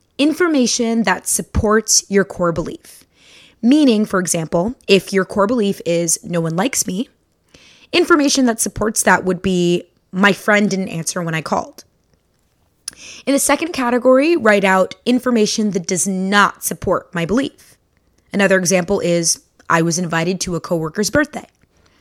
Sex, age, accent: female, 20-39, American